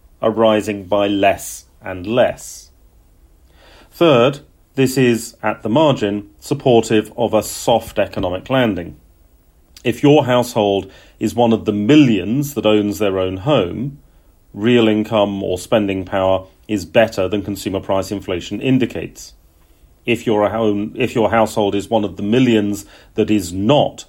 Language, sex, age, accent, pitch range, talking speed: English, male, 40-59, British, 95-115 Hz, 135 wpm